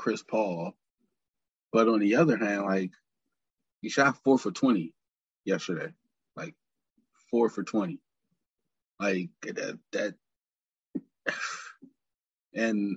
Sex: male